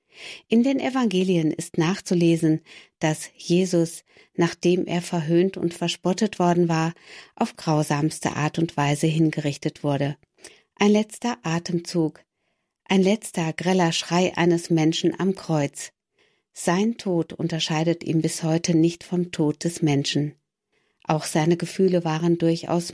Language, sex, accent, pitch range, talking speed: German, female, German, 160-180 Hz, 125 wpm